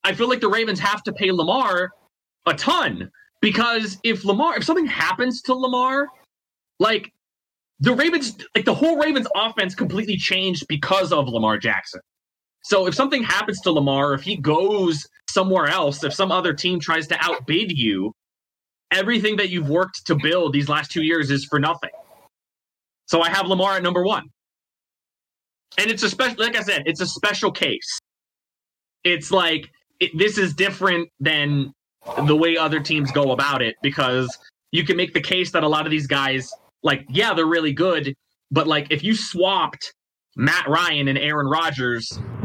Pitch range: 145-205 Hz